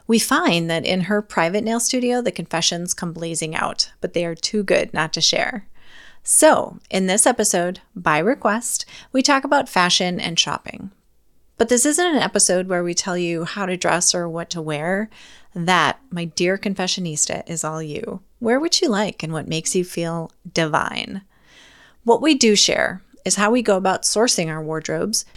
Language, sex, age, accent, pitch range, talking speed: English, female, 30-49, American, 165-225 Hz, 185 wpm